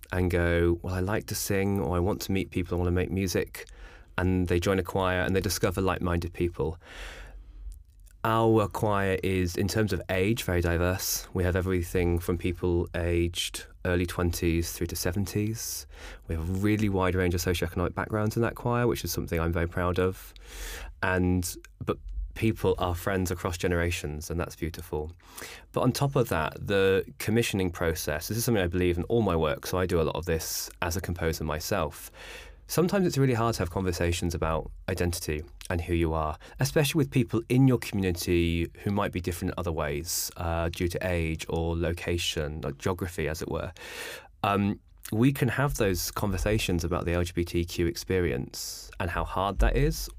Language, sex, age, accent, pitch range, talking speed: English, male, 20-39, British, 85-100 Hz, 190 wpm